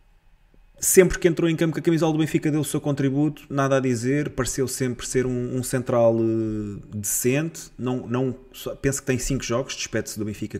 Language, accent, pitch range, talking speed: Portuguese, Portuguese, 115-140 Hz, 200 wpm